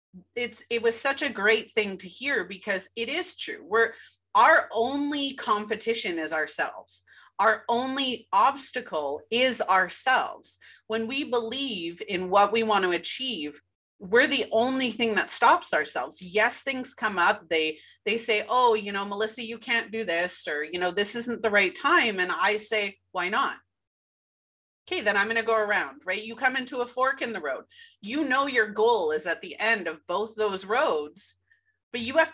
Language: English